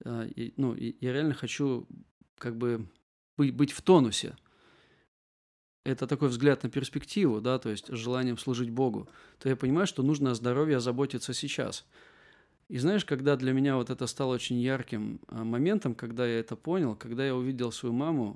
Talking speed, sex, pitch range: 165 wpm, male, 120-135 Hz